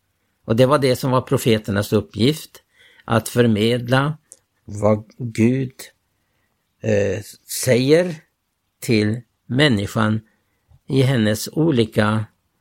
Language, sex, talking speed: Swedish, male, 90 wpm